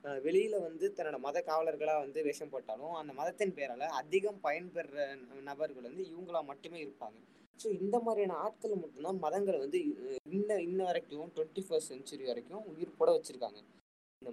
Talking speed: 150 wpm